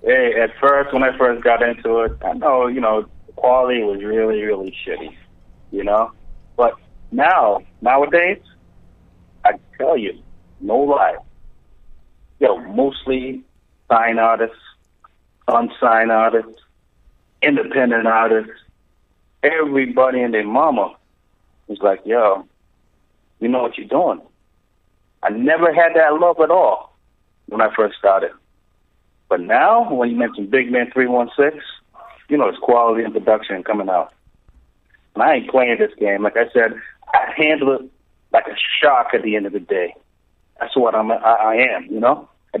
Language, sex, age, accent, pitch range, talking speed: English, male, 30-49, American, 105-135 Hz, 150 wpm